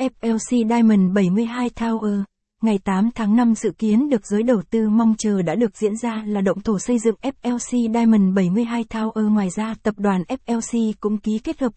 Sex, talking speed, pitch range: female, 195 wpm, 200-235 Hz